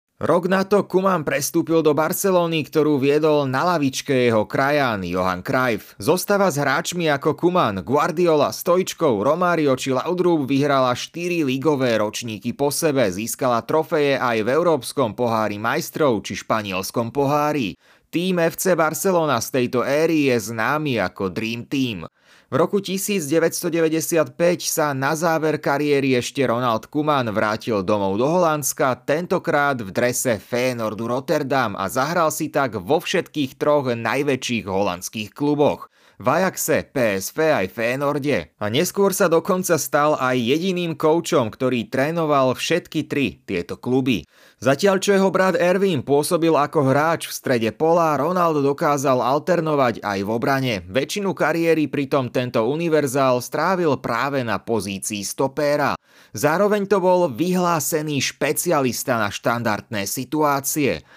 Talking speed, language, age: 130 wpm, Slovak, 30-49